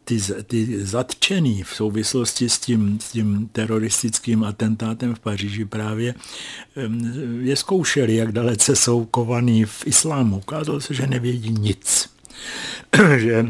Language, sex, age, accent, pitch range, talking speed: Czech, male, 60-79, native, 105-120 Hz, 125 wpm